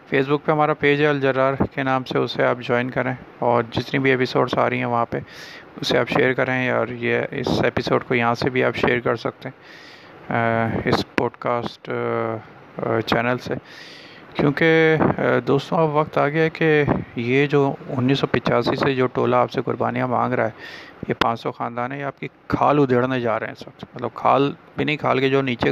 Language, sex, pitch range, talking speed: Urdu, male, 120-140 Hz, 200 wpm